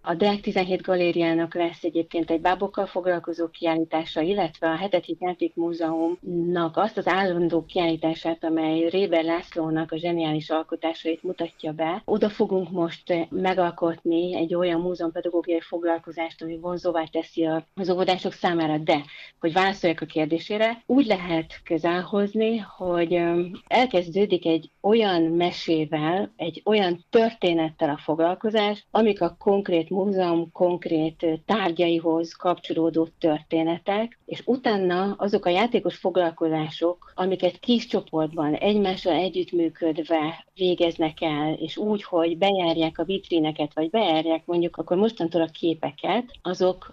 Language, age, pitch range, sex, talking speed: Hungarian, 40-59, 165-185 Hz, female, 120 wpm